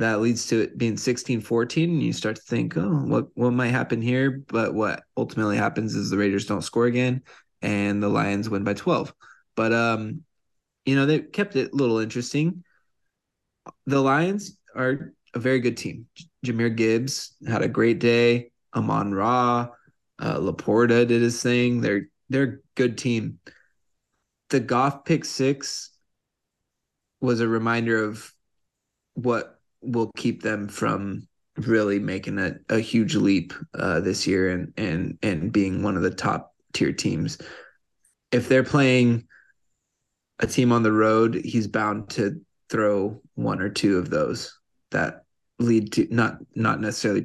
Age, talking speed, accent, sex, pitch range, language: 20-39, 160 wpm, American, male, 105-125 Hz, English